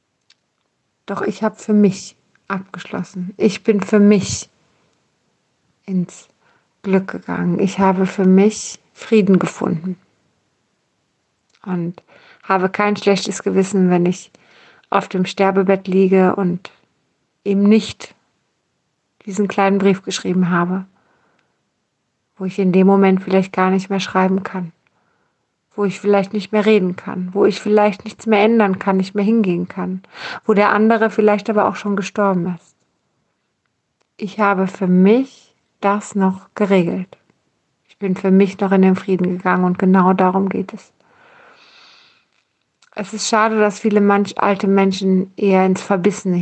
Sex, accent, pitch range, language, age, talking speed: female, German, 185-205 Hz, German, 60-79, 140 wpm